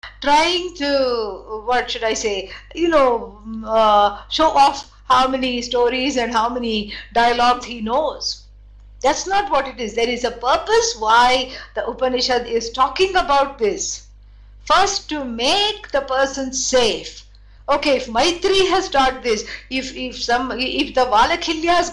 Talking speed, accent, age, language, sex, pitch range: 150 wpm, Indian, 60-79, English, female, 240-305 Hz